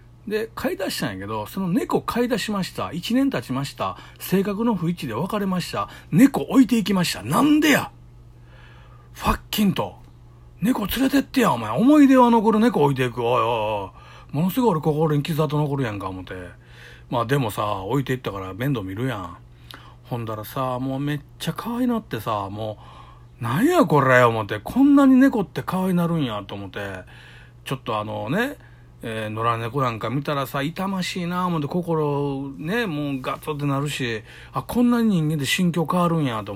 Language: Japanese